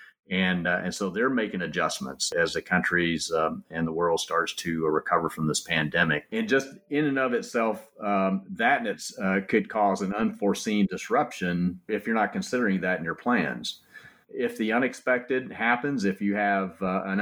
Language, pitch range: English, 90-105 Hz